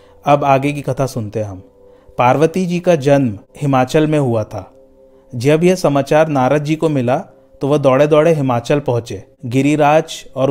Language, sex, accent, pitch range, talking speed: Hindi, male, native, 130-160 Hz, 170 wpm